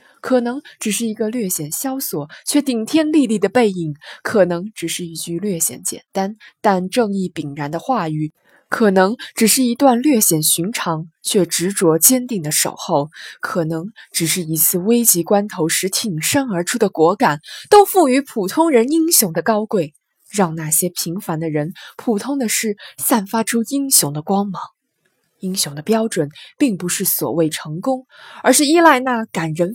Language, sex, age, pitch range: Chinese, female, 20-39, 165-240 Hz